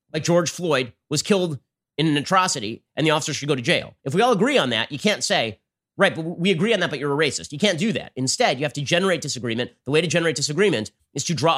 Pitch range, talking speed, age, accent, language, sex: 135-180 Hz, 270 wpm, 30-49, American, English, male